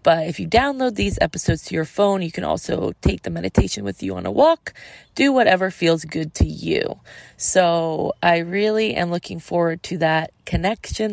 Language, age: English, 20-39